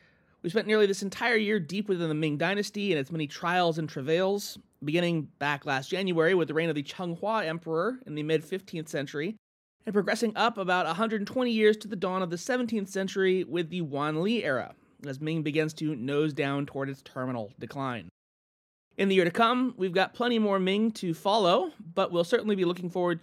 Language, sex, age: English, male, 30-49